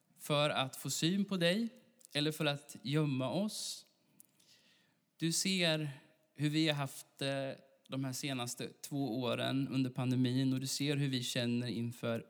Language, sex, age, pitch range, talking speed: Swedish, male, 20-39, 125-155 Hz, 150 wpm